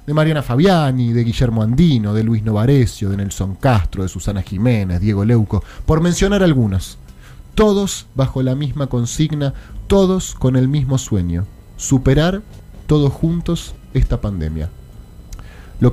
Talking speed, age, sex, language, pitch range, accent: 135 wpm, 30-49, male, Spanish, 110-170 Hz, Argentinian